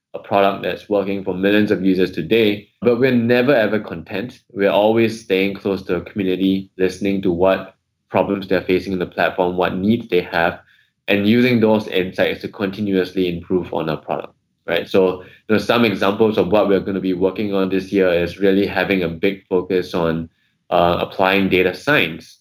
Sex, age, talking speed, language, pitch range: male, 20-39, 185 wpm, English, 90-105 Hz